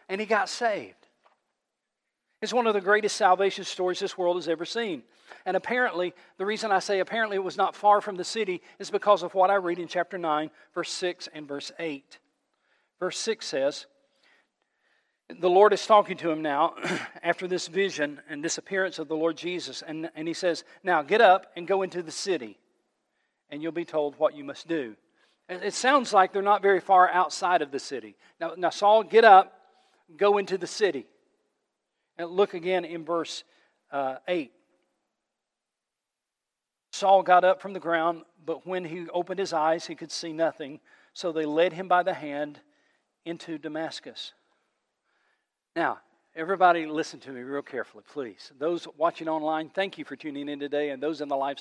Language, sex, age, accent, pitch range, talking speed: English, male, 40-59, American, 155-195 Hz, 185 wpm